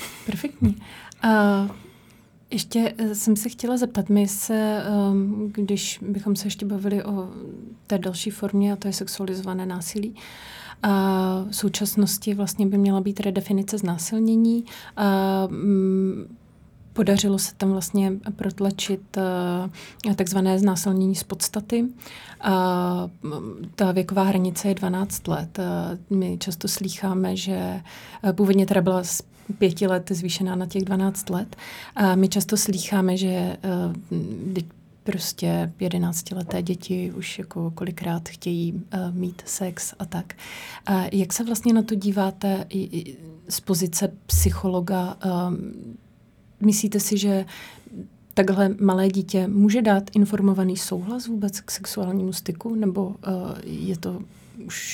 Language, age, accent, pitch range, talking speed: Czech, 30-49, native, 185-205 Hz, 130 wpm